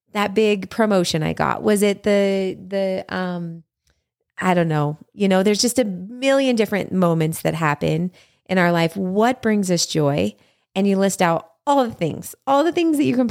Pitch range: 180-225 Hz